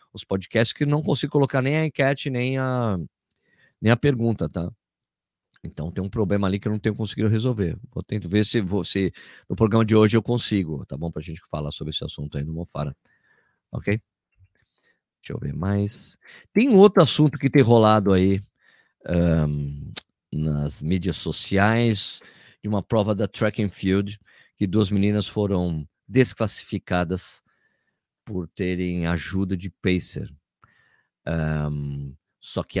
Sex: male